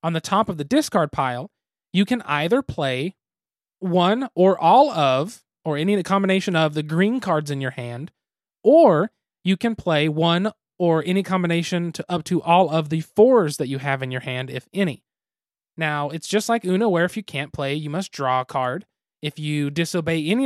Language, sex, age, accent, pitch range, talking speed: English, male, 30-49, American, 150-195 Hz, 195 wpm